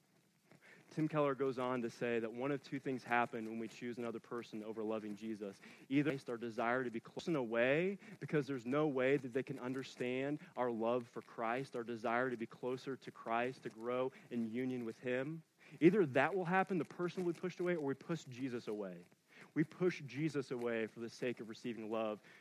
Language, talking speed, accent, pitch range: English, 205 wpm, American, 125-170 Hz